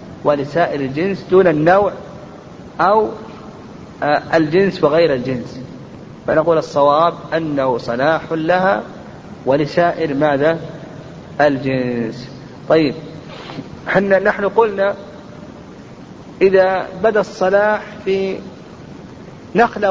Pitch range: 150-195 Hz